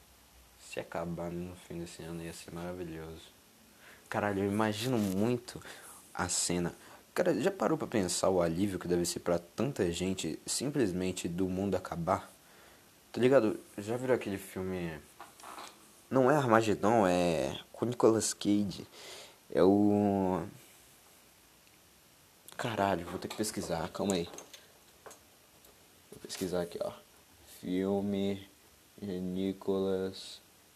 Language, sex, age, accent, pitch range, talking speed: Portuguese, male, 20-39, Brazilian, 90-110 Hz, 115 wpm